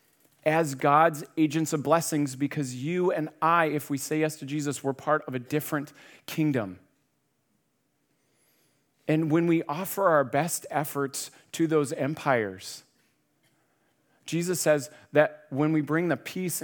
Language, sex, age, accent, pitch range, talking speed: English, male, 40-59, American, 125-150 Hz, 140 wpm